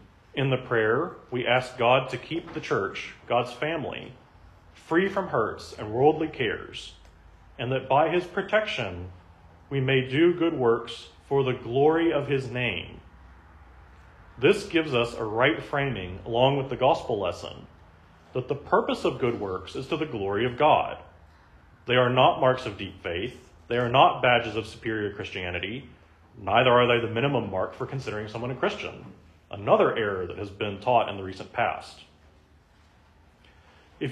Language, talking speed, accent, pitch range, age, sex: English, 165 wpm, American, 95-135 Hz, 40-59, male